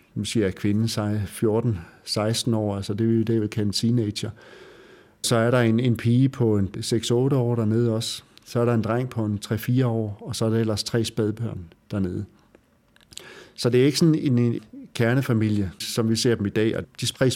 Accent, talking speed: native, 205 wpm